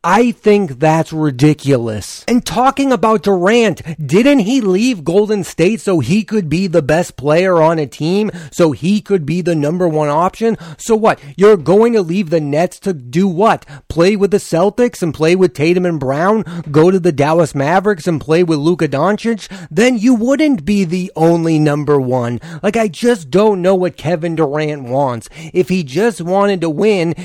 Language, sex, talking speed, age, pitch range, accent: English, male, 185 wpm, 30-49, 160-205 Hz, American